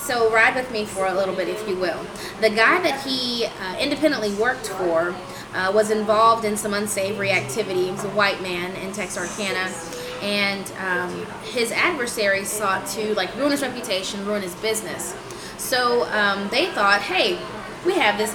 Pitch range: 190-225 Hz